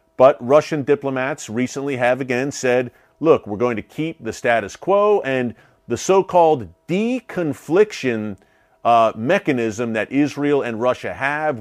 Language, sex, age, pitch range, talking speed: English, male, 40-59, 120-150 Hz, 140 wpm